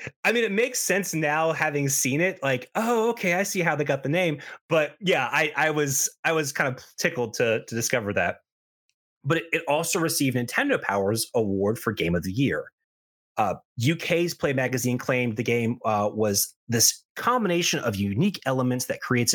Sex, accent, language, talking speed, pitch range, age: male, American, English, 190 wpm, 120-160 Hz, 30-49